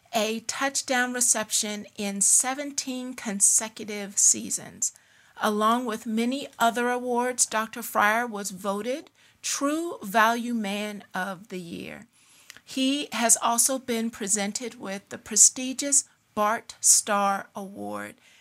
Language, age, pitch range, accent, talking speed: English, 50-69, 210-255 Hz, American, 110 wpm